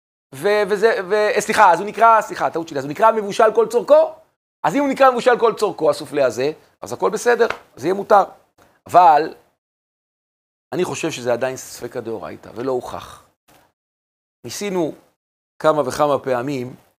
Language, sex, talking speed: Hebrew, male, 150 wpm